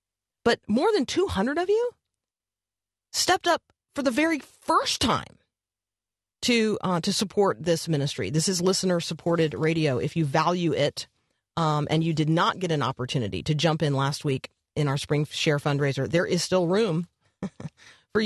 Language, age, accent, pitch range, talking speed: English, 40-59, American, 155-195 Hz, 165 wpm